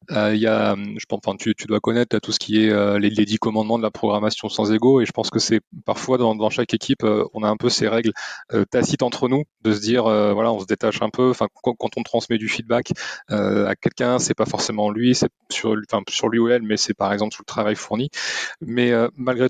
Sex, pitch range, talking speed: male, 105-125 Hz, 270 wpm